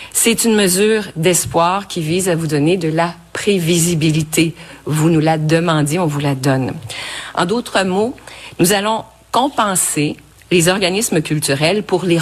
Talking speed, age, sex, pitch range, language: 150 wpm, 50-69, female, 155-205 Hz, French